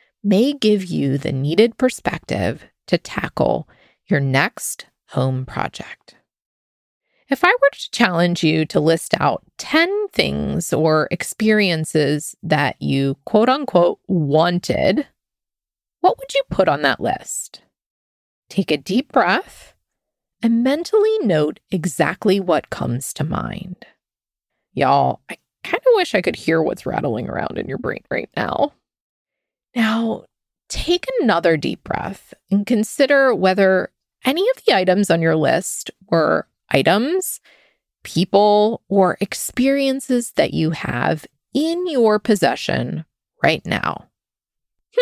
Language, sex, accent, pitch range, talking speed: English, female, American, 175-285 Hz, 125 wpm